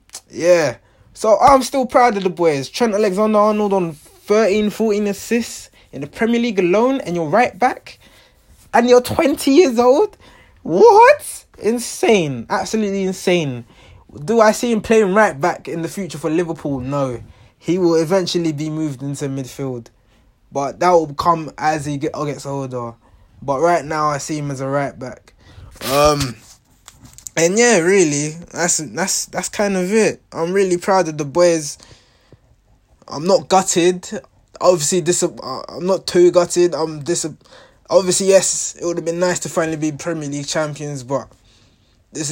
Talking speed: 160 wpm